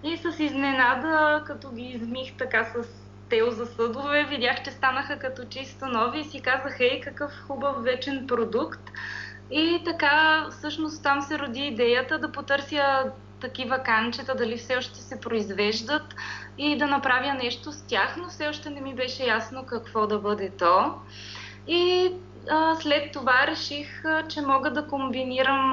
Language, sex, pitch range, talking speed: Bulgarian, female, 235-285 Hz, 160 wpm